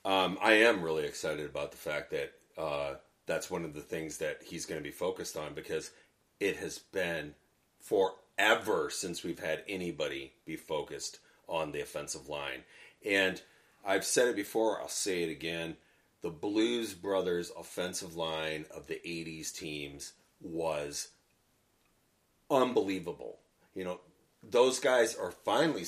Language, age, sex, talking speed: English, 40-59, male, 145 wpm